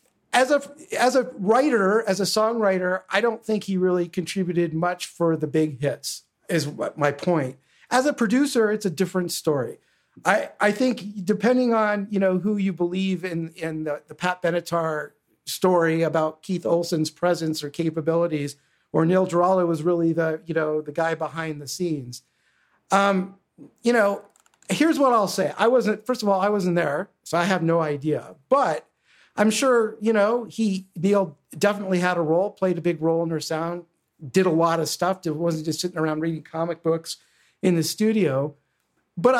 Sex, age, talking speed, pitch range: male, 50-69, 180 wpm, 165-210 Hz